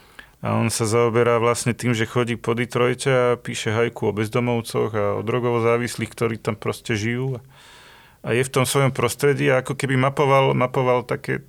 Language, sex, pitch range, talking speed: Slovak, male, 110-130 Hz, 180 wpm